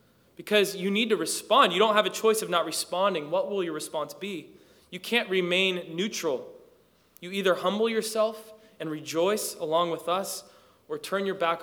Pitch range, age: 145-185 Hz, 20-39